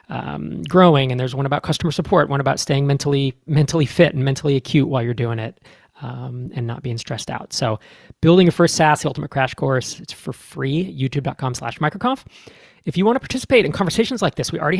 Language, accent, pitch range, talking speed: English, American, 130-170 Hz, 215 wpm